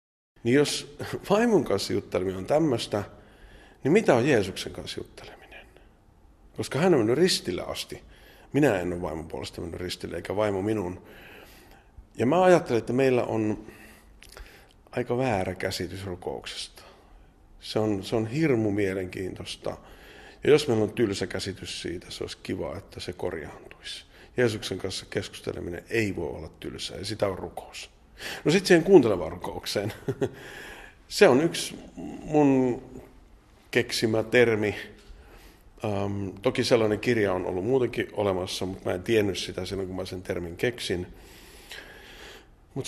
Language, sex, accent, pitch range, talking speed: Finnish, male, native, 95-120 Hz, 135 wpm